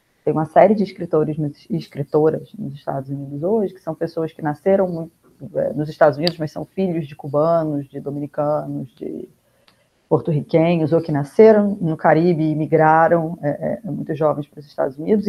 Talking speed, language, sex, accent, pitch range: 175 wpm, Portuguese, female, Brazilian, 155-185 Hz